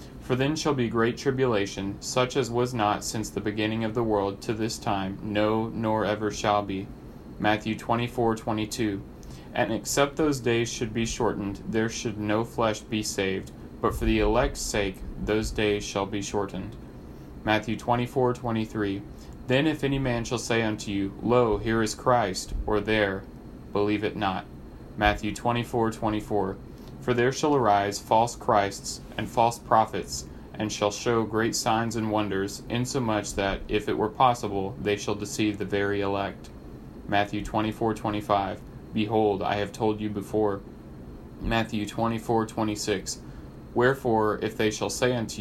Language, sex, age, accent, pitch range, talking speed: English, male, 30-49, American, 105-115 Hz, 150 wpm